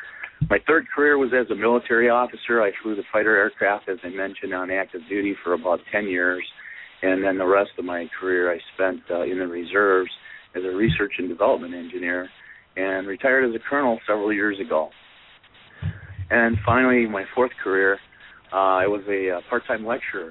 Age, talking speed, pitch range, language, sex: 50-69, 185 wpm, 95-110 Hz, English, male